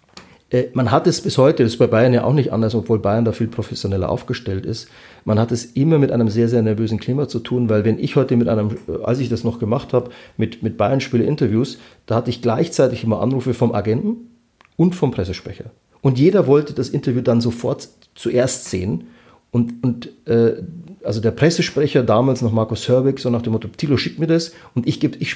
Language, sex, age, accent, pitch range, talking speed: German, male, 30-49, German, 110-130 Hz, 215 wpm